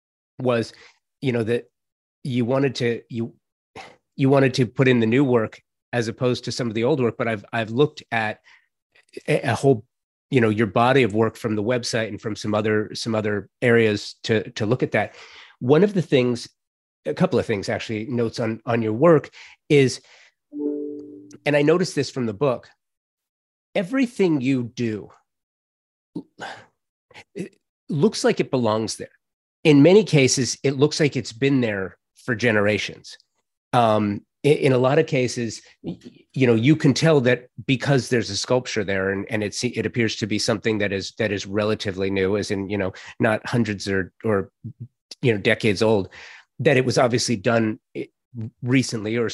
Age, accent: 30-49, American